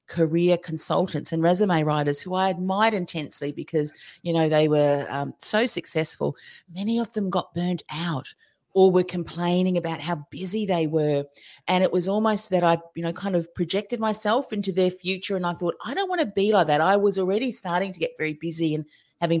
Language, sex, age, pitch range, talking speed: English, female, 40-59, 155-195 Hz, 205 wpm